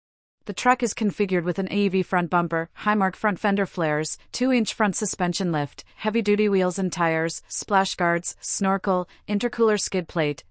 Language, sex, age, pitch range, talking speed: English, female, 30-49, 170-200 Hz, 155 wpm